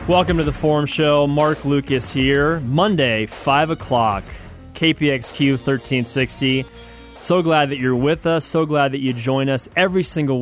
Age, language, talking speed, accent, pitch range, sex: 20-39, English, 155 wpm, American, 130-165 Hz, male